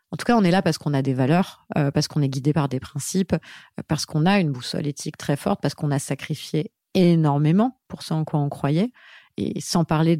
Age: 30-49